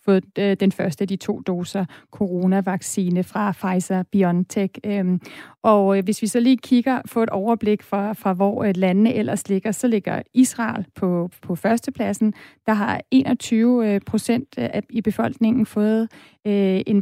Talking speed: 140 wpm